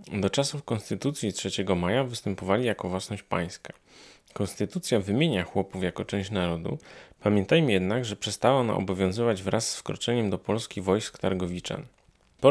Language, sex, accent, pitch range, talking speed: Polish, male, native, 100-130 Hz, 140 wpm